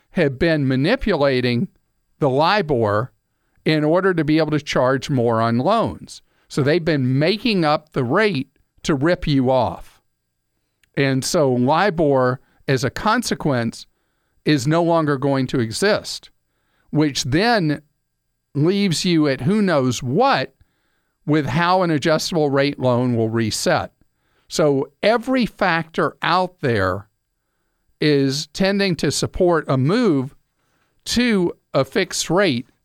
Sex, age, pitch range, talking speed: male, 50-69, 130-170 Hz, 125 wpm